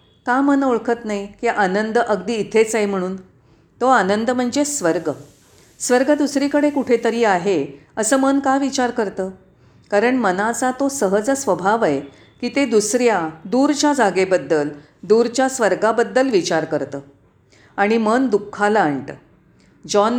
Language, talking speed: Marathi, 125 wpm